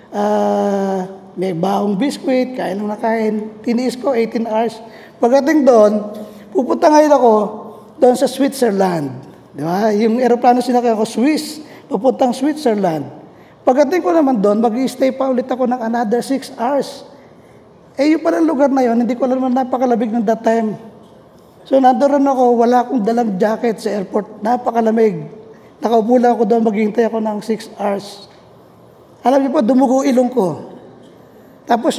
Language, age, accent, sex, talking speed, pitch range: Filipino, 20-39, native, male, 150 wpm, 220-270 Hz